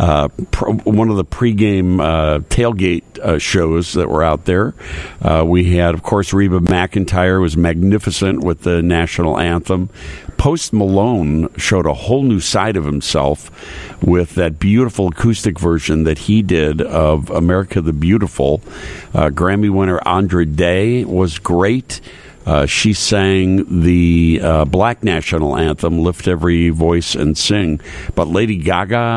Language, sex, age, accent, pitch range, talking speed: English, male, 60-79, American, 85-100 Hz, 145 wpm